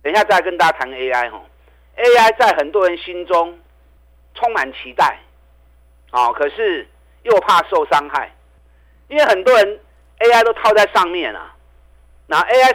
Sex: male